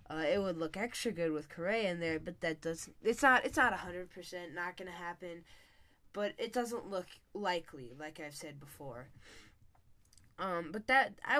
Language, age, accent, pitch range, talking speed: English, 10-29, American, 135-185 Hz, 185 wpm